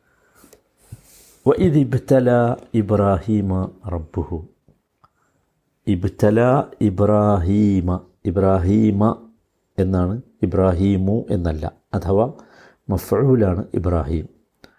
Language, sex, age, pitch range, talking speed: Malayalam, male, 60-79, 95-125 Hz, 55 wpm